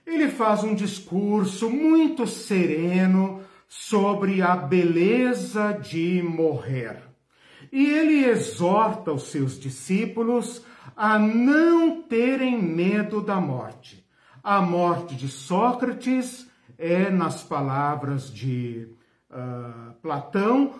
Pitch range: 160-225 Hz